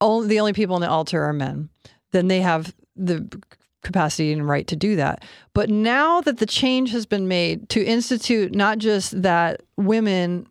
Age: 40-59